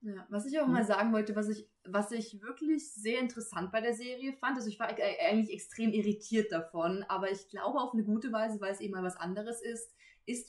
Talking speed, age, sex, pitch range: 230 wpm, 20-39, female, 195-235 Hz